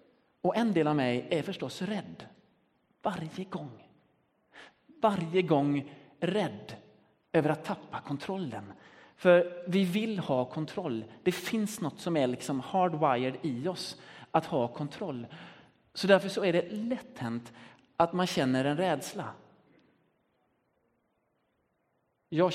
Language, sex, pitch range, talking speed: Swedish, male, 135-195 Hz, 115 wpm